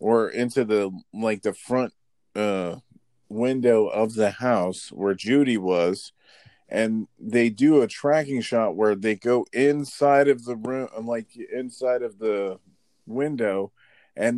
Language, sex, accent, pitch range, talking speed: English, male, American, 105-130 Hz, 140 wpm